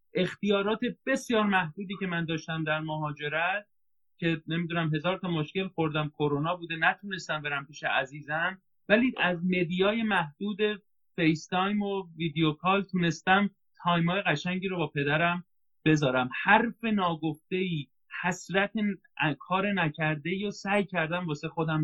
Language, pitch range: Persian, 155-200 Hz